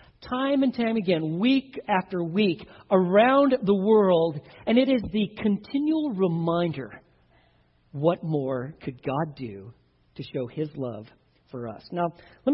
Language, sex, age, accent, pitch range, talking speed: English, male, 40-59, American, 165-230 Hz, 140 wpm